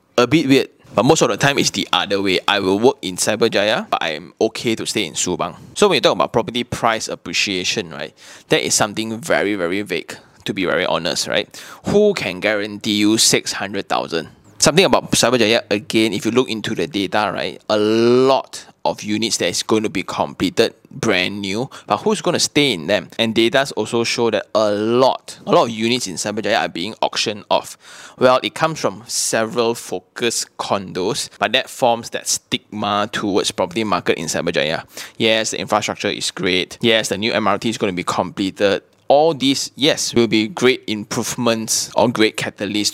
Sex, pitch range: male, 105-120 Hz